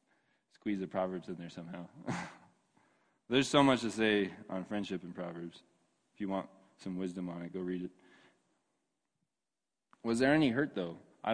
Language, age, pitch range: English, 20-39, 95-120 Hz